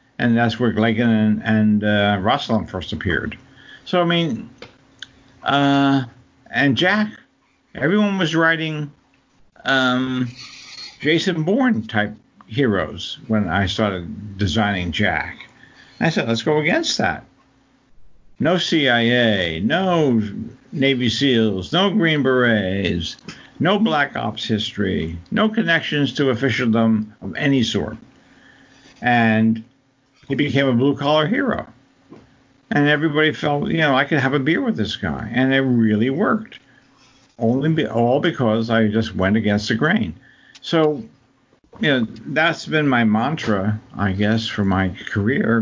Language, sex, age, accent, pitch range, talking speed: English, male, 60-79, American, 110-145 Hz, 130 wpm